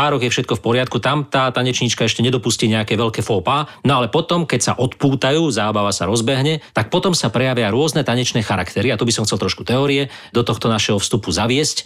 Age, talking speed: 40-59, 200 wpm